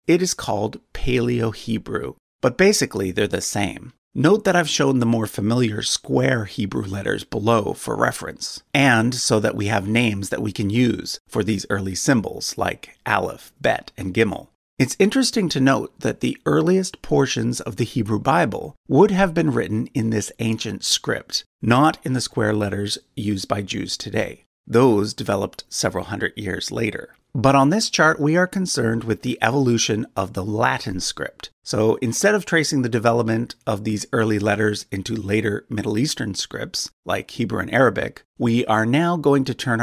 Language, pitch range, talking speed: English, 105-140 Hz, 175 wpm